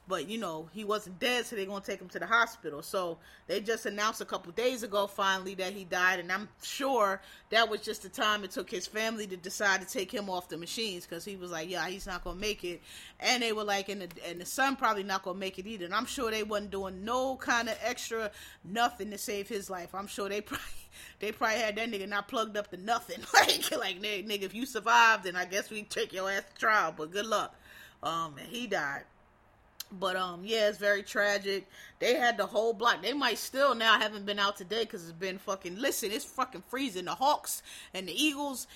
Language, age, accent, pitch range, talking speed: English, 30-49, American, 190-235 Hz, 240 wpm